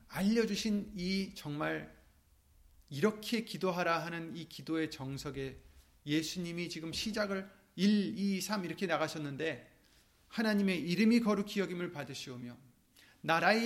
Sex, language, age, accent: male, Korean, 30-49, native